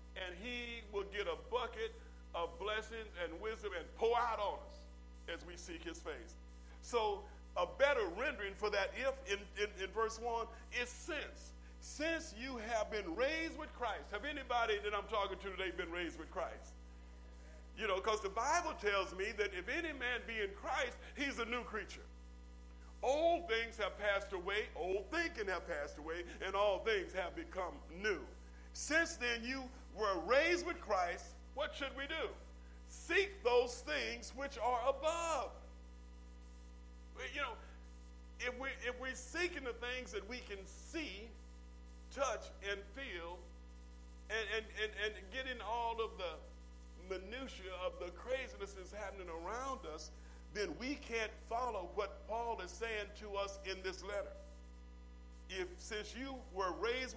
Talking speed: 160 wpm